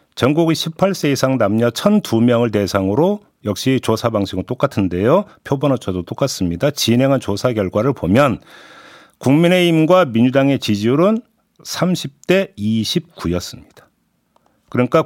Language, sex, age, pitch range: Korean, male, 50-69, 115-190 Hz